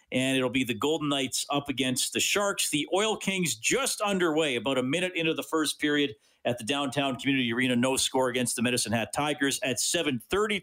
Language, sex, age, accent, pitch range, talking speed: English, male, 50-69, American, 130-195 Hz, 205 wpm